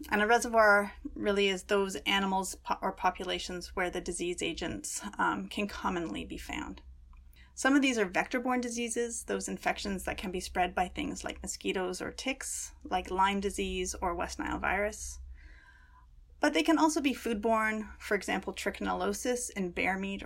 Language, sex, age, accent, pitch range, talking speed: English, female, 30-49, American, 175-230 Hz, 165 wpm